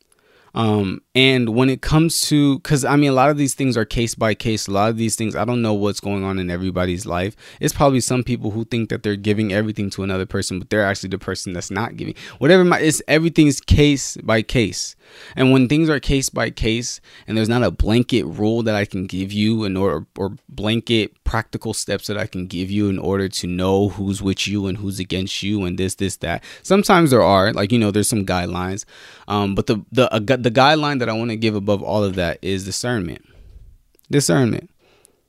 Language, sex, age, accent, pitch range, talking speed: English, male, 20-39, American, 95-120 Hz, 225 wpm